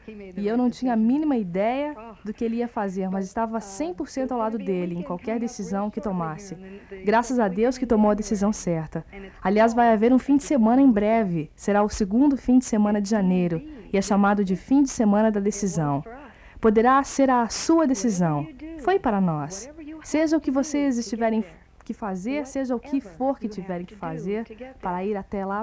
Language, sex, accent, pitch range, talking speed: Portuguese, female, Brazilian, 195-245 Hz, 195 wpm